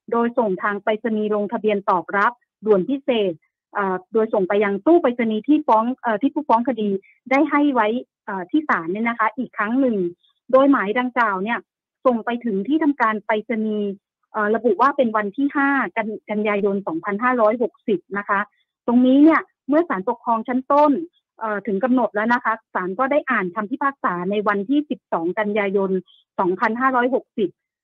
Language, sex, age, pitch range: Thai, female, 30-49, 210-270 Hz